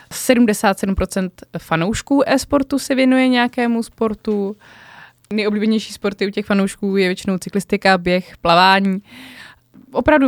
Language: Czech